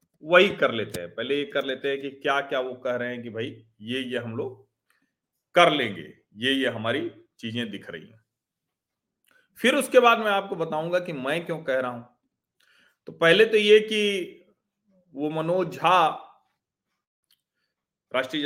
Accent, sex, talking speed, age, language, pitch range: native, male, 165 wpm, 40-59, Hindi, 125-195 Hz